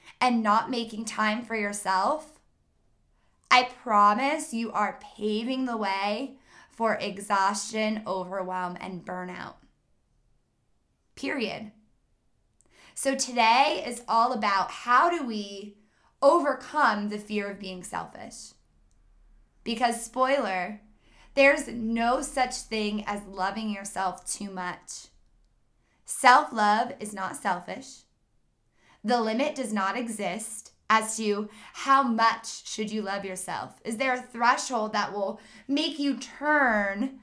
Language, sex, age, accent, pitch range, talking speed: English, female, 20-39, American, 200-250 Hz, 115 wpm